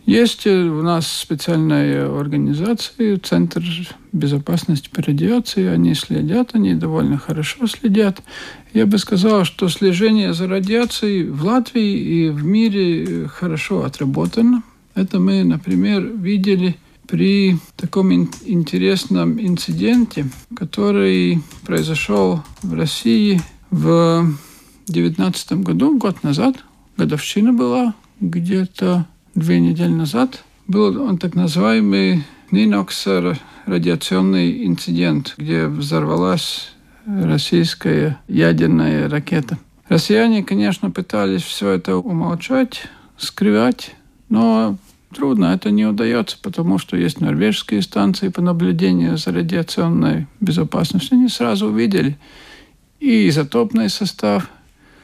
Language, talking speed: Russian, 100 wpm